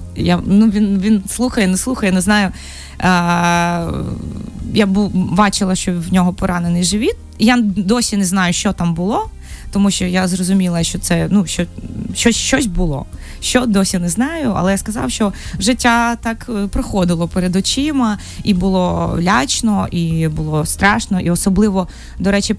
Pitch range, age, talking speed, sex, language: 180-235 Hz, 20-39, 155 wpm, female, Ukrainian